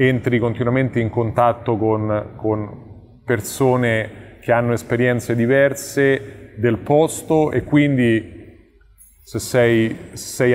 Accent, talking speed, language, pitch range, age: native, 100 wpm, Italian, 110-125 Hz, 30-49